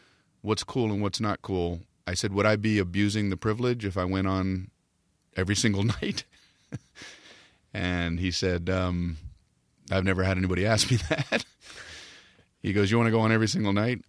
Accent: American